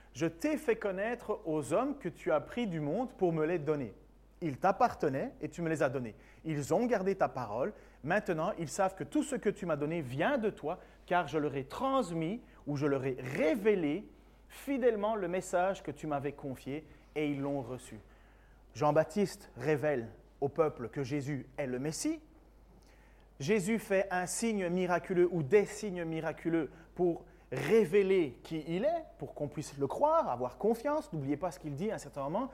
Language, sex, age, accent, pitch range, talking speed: French, male, 30-49, French, 155-230 Hz, 190 wpm